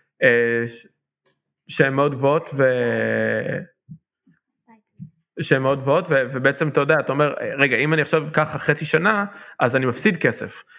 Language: Hebrew